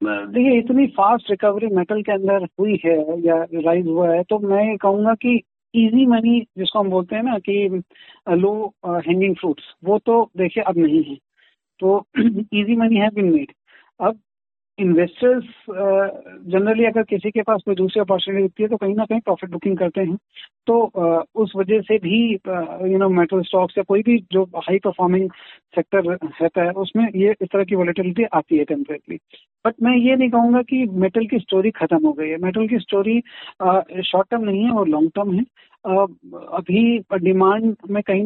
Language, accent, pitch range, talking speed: Hindi, native, 180-220 Hz, 180 wpm